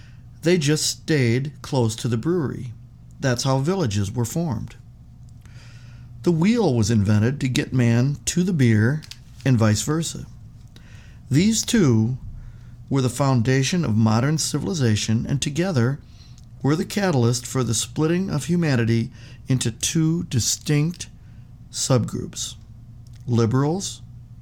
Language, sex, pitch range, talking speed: English, male, 115-140 Hz, 120 wpm